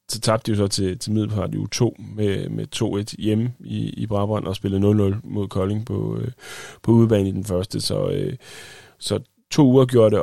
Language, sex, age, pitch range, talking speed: Danish, male, 30-49, 95-115 Hz, 210 wpm